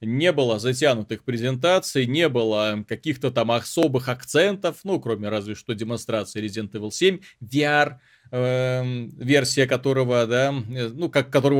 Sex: male